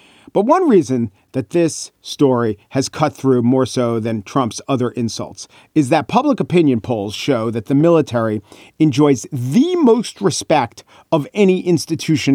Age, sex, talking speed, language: 40-59, male, 150 wpm, English